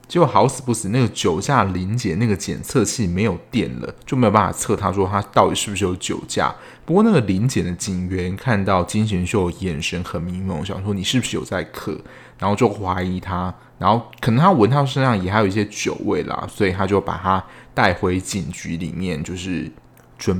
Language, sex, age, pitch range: Chinese, male, 20-39, 90-120 Hz